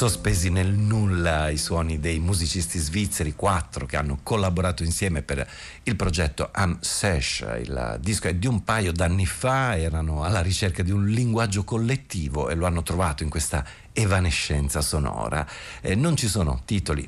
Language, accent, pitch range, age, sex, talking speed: Italian, native, 80-105 Hz, 50-69, male, 160 wpm